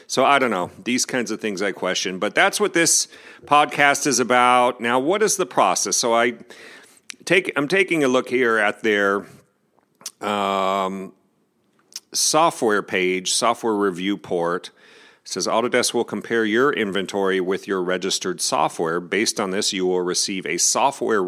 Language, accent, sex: English, American, male